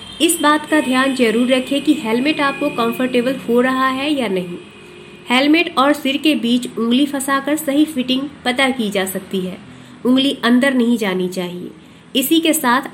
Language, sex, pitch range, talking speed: Hindi, female, 220-285 Hz, 170 wpm